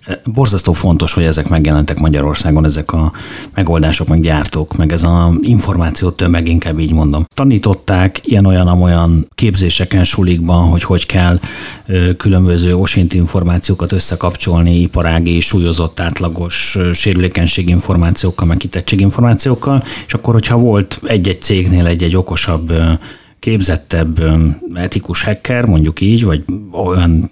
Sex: male